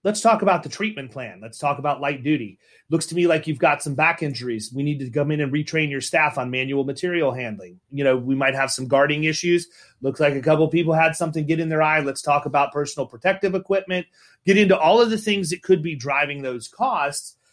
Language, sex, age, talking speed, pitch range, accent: English, male, 30-49, 245 wpm, 140-175 Hz, American